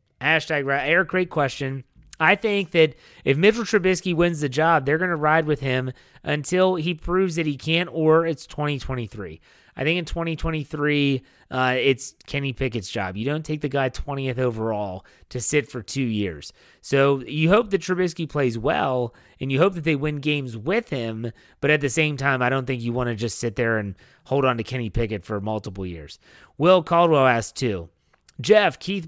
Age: 30-49